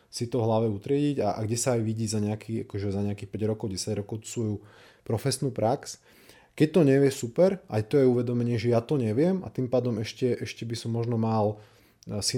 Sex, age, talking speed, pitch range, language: male, 20-39, 210 wpm, 105-120 Hz, Slovak